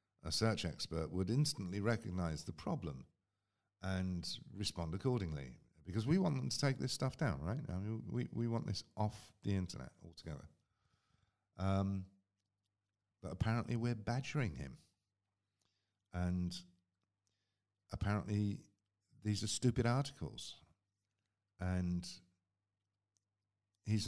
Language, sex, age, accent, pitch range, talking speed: English, male, 50-69, British, 90-110 Hz, 105 wpm